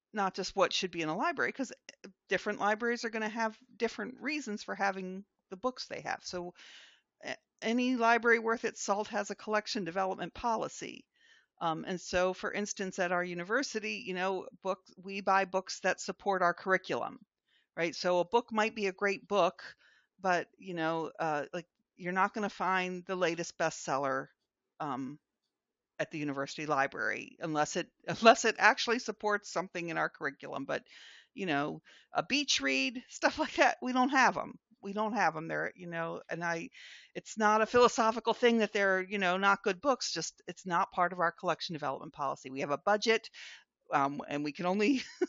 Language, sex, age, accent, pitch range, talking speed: English, female, 50-69, American, 175-230 Hz, 185 wpm